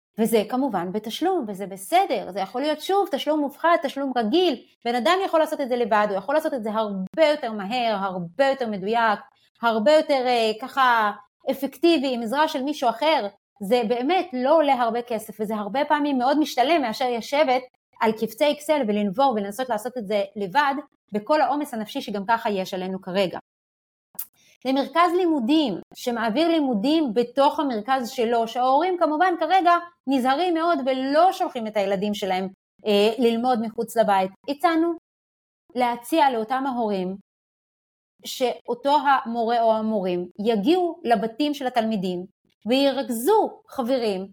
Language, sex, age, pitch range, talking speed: Hebrew, female, 30-49, 215-295 Hz, 140 wpm